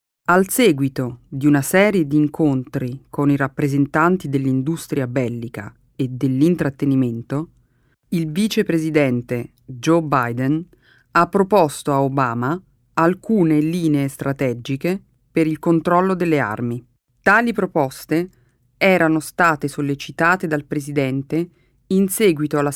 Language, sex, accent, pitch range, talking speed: Italian, female, native, 140-175 Hz, 105 wpm